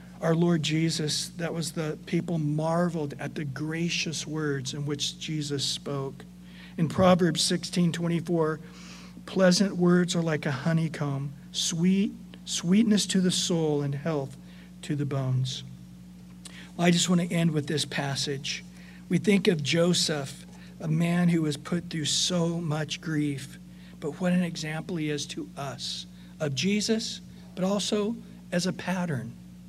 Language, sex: English, male